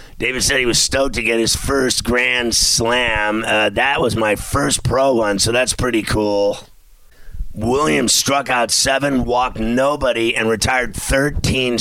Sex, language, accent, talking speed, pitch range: male, English, American, 160 wpm, 110-130 Hz